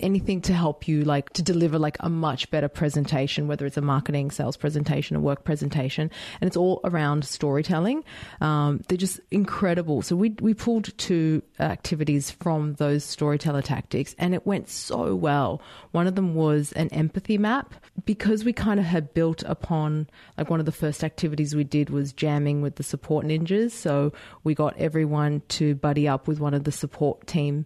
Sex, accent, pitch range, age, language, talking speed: female, Australian, 145-175 Hz, 30-49, English, 185 wpm